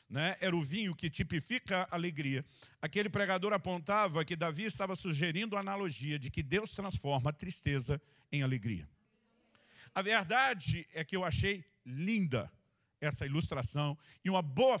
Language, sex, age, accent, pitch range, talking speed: Portuguese, male, 50-69, Brazilian, 145-195 Hz, 150 wpm